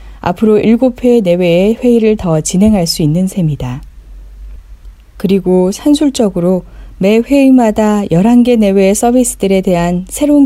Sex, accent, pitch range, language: female, native, 160-220 Hz, Korean